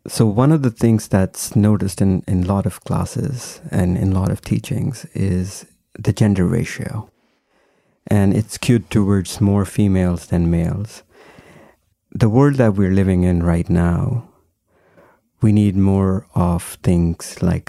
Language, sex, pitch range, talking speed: English, male, 95-115 Hz, 155 wpm